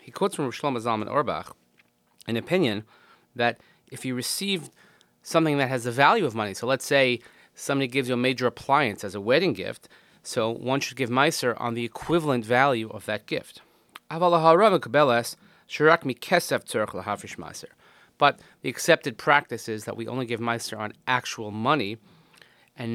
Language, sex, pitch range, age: English, male, 110-140 Hz, 30-49